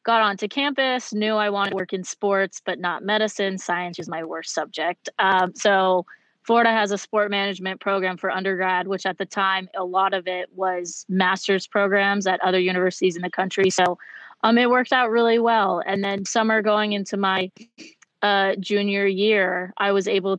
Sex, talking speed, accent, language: female, 190 wpm, American, English